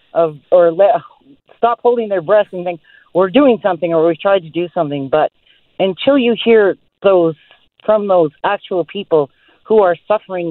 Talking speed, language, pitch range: 170 wpm, English, 160-190 Hz